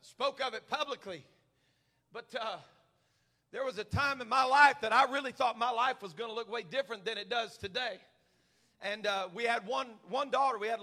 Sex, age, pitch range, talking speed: male, 40-59, 195-230 Hz, 210 wpm